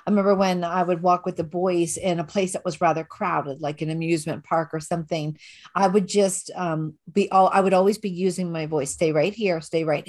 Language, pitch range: English, 160-195 Hz